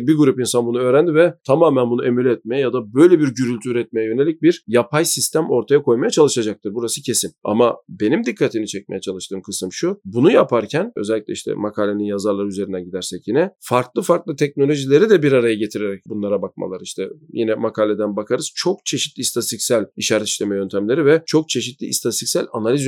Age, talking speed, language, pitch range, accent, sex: 40-59, 170 wpm, Turkish, 115-150 Hz, native, male